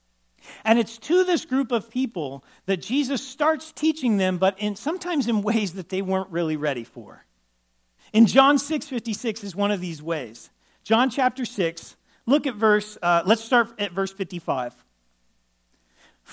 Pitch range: 180-250 Hz